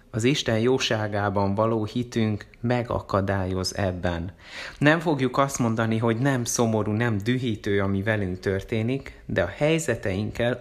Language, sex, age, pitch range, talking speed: Hungarian, male, 30-49, 105-125 Hz, 125 wpm